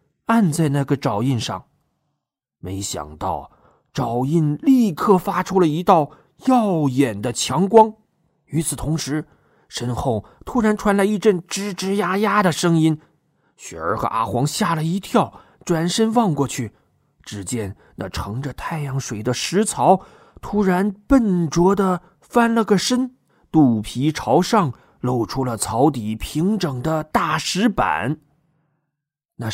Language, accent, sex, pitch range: Chinese, native, male, 130-190 Hz